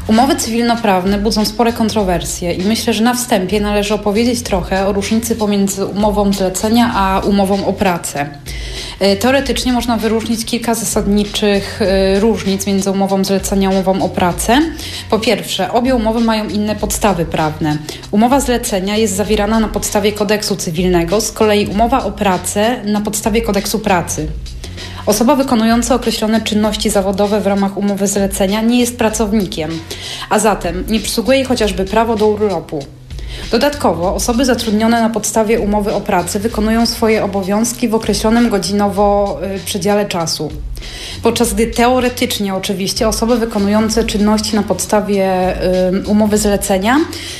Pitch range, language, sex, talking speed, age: 195-225 Hz, Polish, female, 135 wpm, 30-49